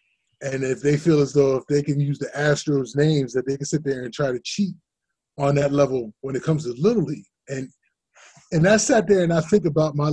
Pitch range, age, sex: 130-155 Hz, 20-39, male